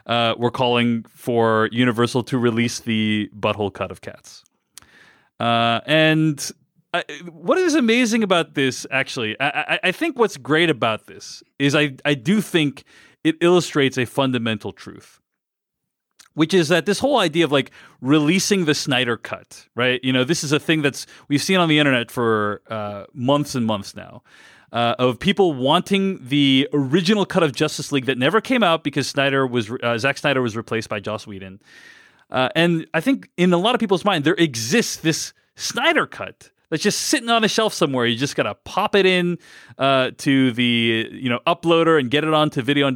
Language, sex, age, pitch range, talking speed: English, male, 30-49, 125-175 Hz, 185 wpm